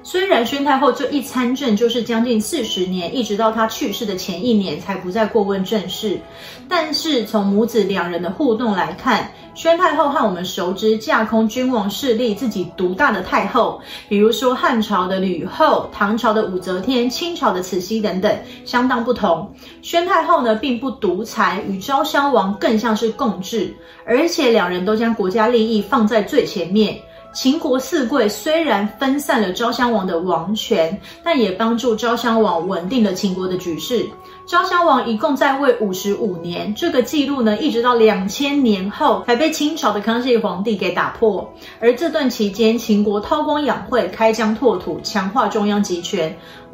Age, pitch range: 30-49, 205-255 Hz